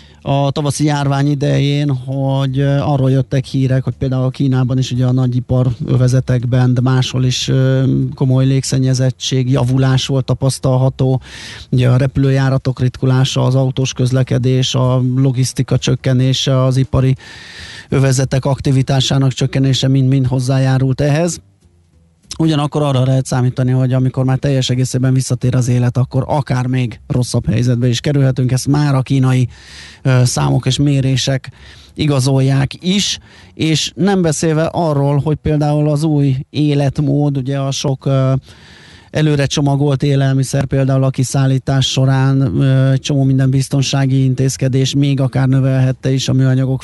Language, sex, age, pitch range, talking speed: Hungarian, male, 20-39, 130-140 Hz, 130 wpm